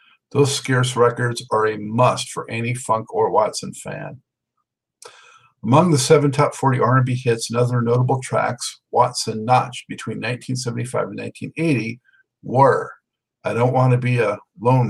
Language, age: English, 50-69